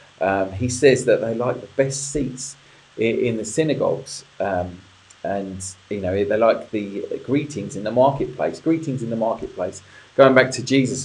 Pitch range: 110-145 Hz